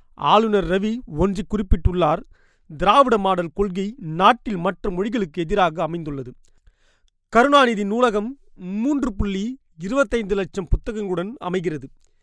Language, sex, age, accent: Tamil, male, 30-49, native